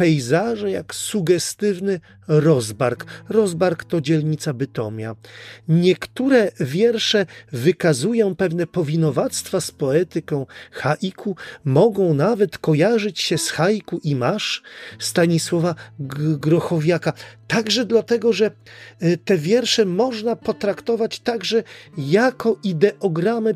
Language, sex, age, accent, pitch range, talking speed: Polish, male, 40-59, native, 140-205 Hz, 90 wpm